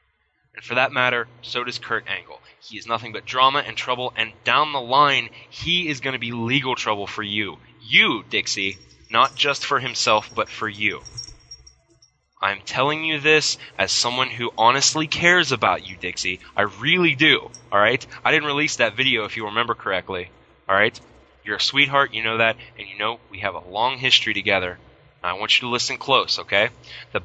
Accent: American